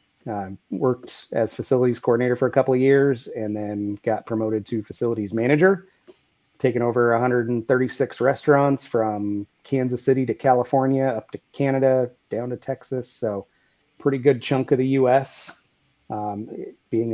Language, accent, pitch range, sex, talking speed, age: English, American, 115-140 Hz, male, 145 wpm, 30-49